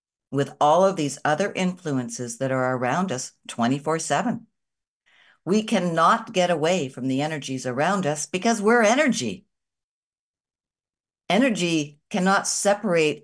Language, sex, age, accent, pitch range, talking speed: English, female, 60-79, American, 145-200 Hz, 120 wpm